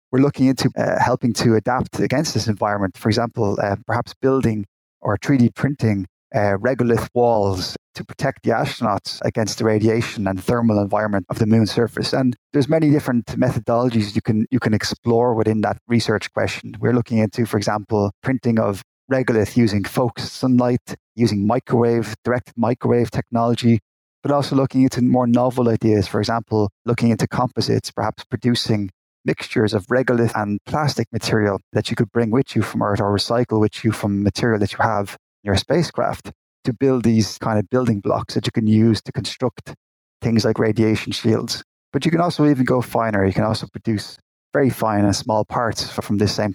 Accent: Irish